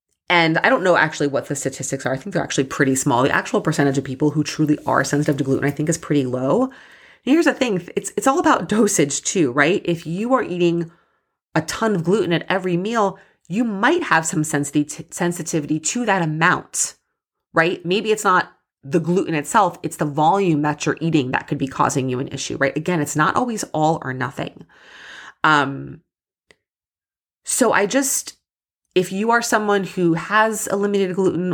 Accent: American